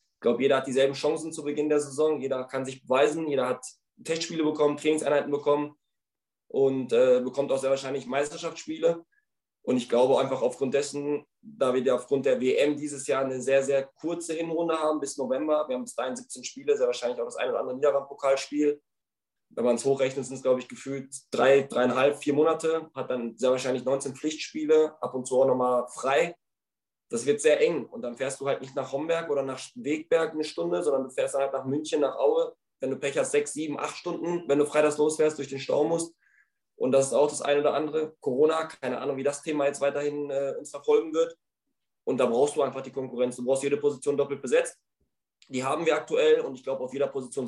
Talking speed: 220 wpm